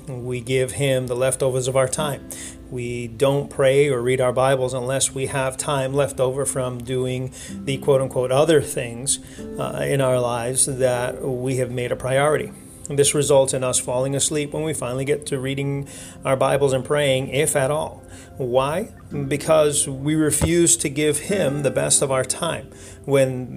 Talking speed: 175 wpm